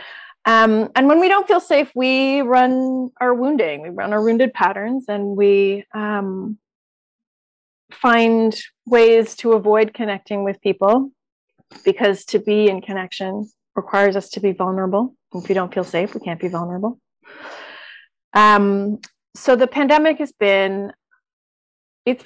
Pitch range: 200-235 Hz